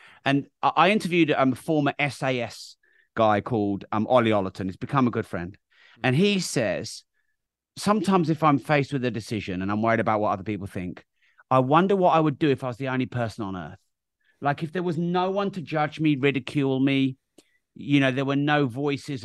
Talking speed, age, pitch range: 205 wpm, 30-49, 120-165 Hz